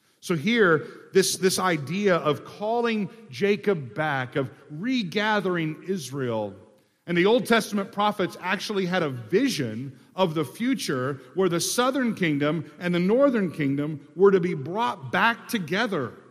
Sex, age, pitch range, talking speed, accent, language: male, 50-69, 125-195 Hz, 140 wpm, American, English